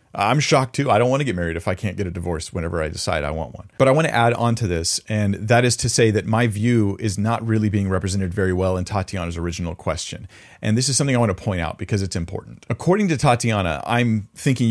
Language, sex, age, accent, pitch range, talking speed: English, male, 40-59, American, 95-115 Hz, 265 wpm